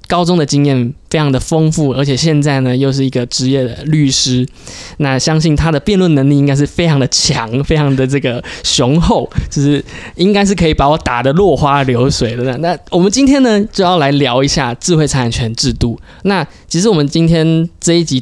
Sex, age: male, 20-39